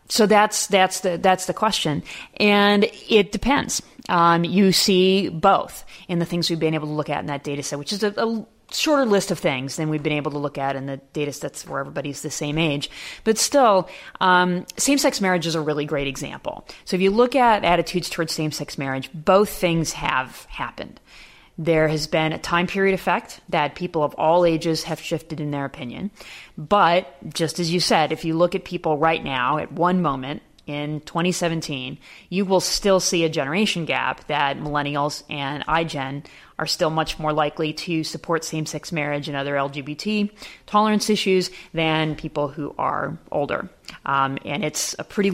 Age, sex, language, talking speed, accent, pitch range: 30-49, female, English, 190 wpm, American, 150-190 Hz